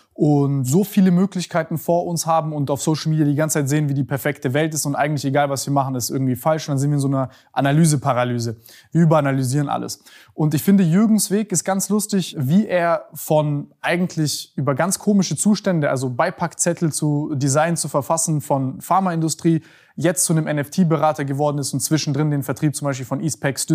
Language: German